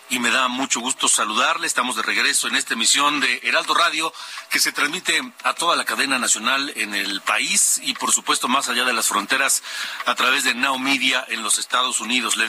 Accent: Mexican